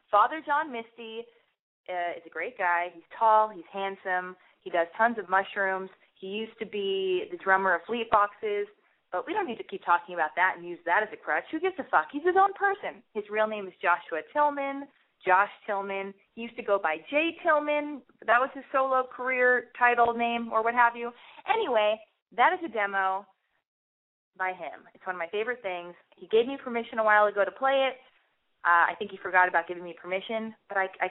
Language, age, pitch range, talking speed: English, 20-39, 190-300 Hz, 210 wpm